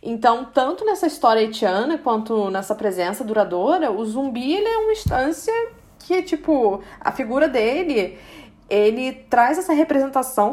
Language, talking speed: Portuguese, 135 wpm